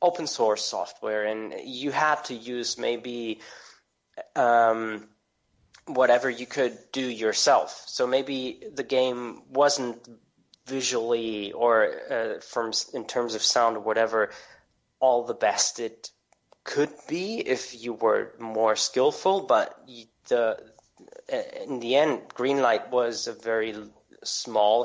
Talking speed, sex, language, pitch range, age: 125 wpm, male, English, 115-165 Hz, 20-39